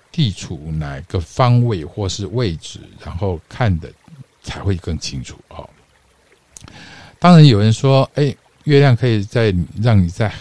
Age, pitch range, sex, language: 50-69, 90-115 Hz, male, Chinese